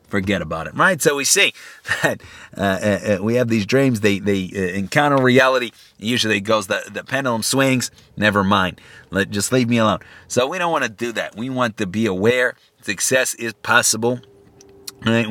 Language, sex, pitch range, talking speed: English, male, 105-130 Hz, 190 wpm